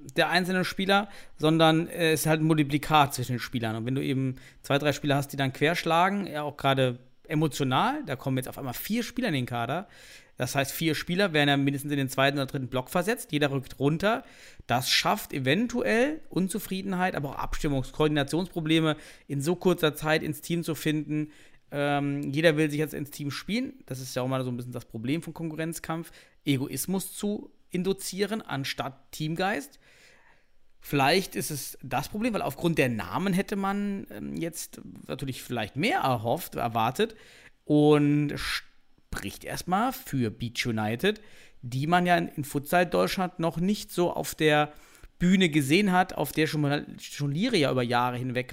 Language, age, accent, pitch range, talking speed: German, 40-59, German, 140-185 Hz, 175 wpm